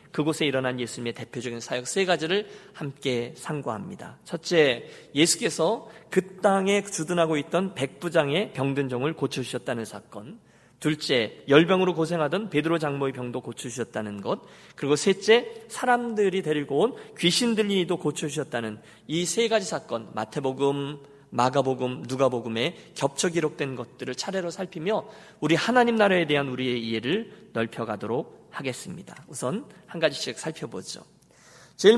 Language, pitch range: Korean, 135-200 Hz